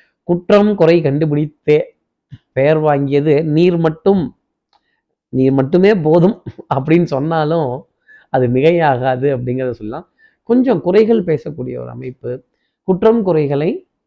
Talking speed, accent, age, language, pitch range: 100 wpm, native, 20-39, Tamil, 135-180 Hz